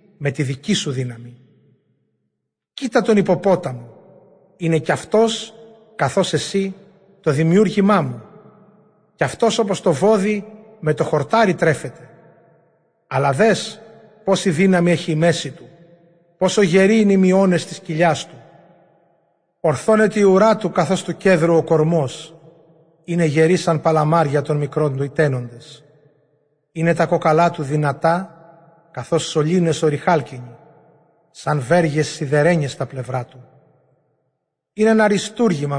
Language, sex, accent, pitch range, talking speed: Greek, male, native, 140-175 Hz, 125 wpm